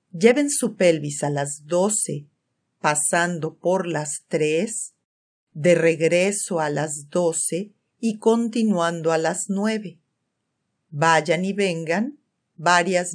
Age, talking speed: 40-59, 110 wpm